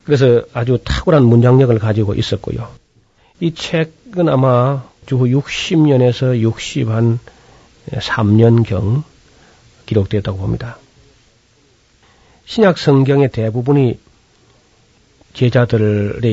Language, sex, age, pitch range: Korean, male, 40-59, 110-135 Hz